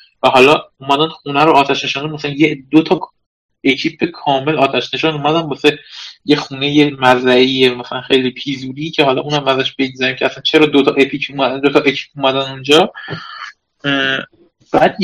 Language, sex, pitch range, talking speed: Persian, male, 135-180 Hz, 160 wpm